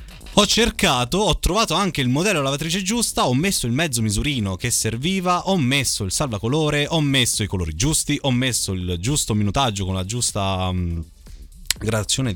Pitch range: 95-145 Hz